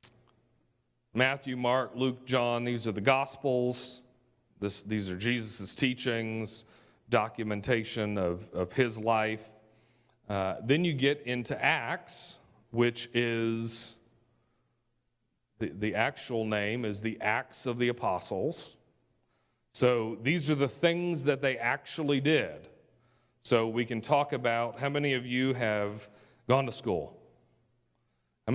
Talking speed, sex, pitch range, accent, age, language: 120 wpm, male, 110-140 Hz, American, 40-59, English